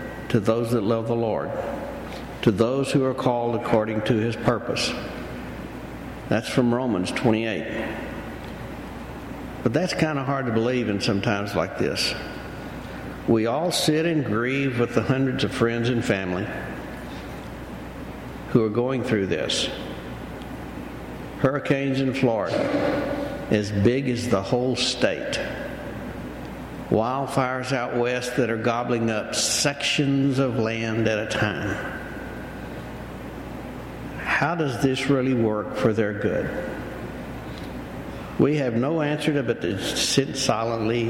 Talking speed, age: 125 wpm, 60-79